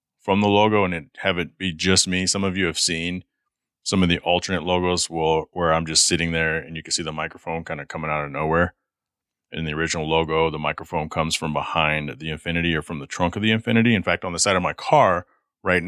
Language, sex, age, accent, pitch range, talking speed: English, male, 30-49, American, 80-100 Hz, 245 wpm